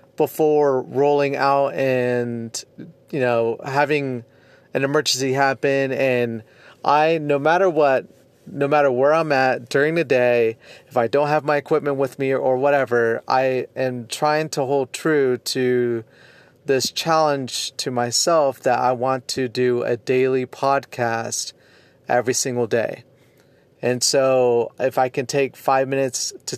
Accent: American